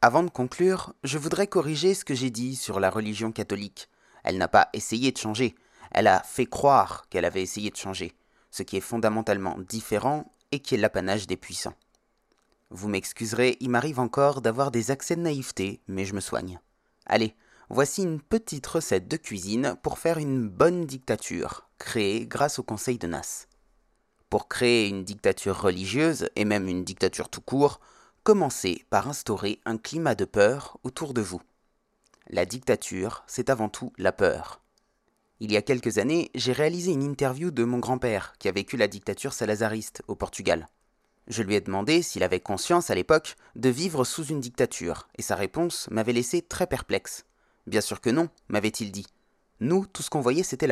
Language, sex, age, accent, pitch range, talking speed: French, male, 30-49, French, 105-145 Hz, 180 wpm